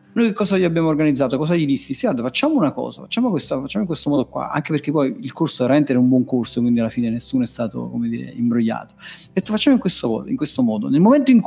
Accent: native